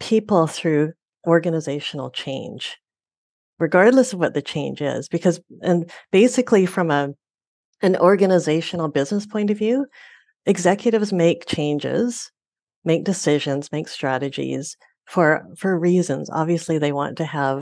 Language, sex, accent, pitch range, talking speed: English, female, American, 155-210 Hz, 125 wpm